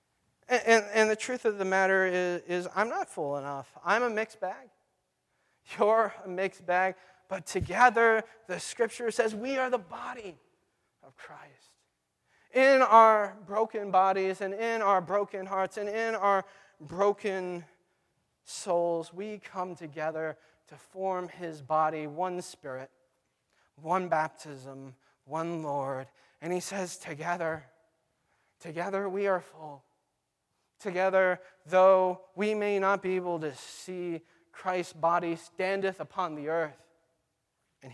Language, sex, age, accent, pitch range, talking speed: English, male, 30-49, American, 160-200 Hz, 130 wpm